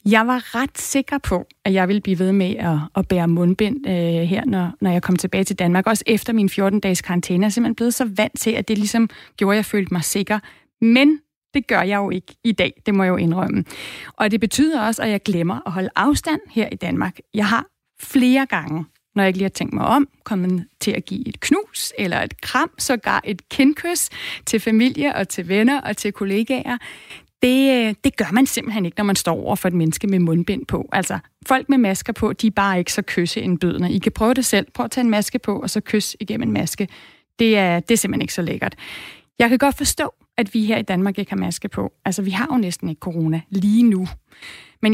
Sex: female